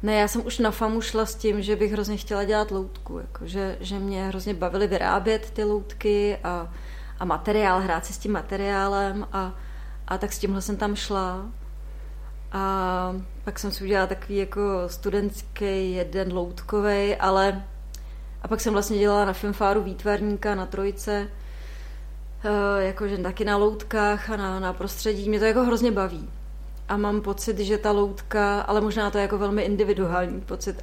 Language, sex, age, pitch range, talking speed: Czech, female, 30-49, 190-210 Hz, 170 wpm